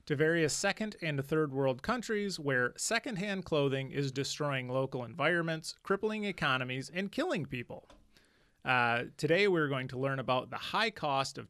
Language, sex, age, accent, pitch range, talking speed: English, male, 30-49, American, 130-175 Hz, 155 wpm